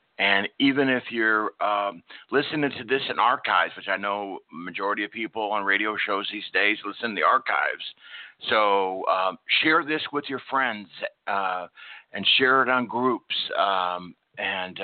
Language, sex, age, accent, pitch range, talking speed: English, male, 60-79, American, 100-125 Hz, 160 wpm